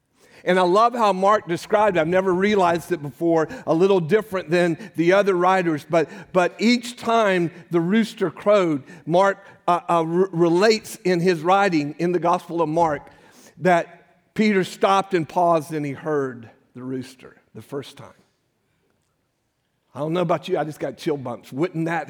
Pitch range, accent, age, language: 140-185 Hz, American, 50-69, English